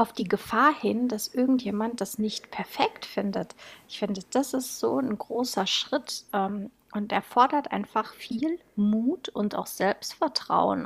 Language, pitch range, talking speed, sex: German, 210-245 Hz, 150 wpm, female